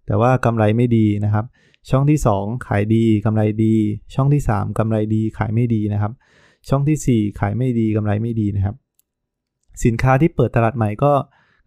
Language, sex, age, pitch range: Thai, male, 20-39, 110-130 Hz